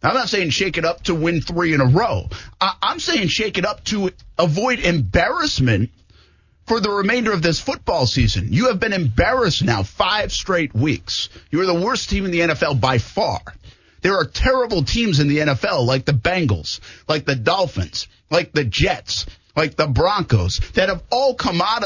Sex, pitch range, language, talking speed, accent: male, 115-175 Hz, English, 190 wpm, American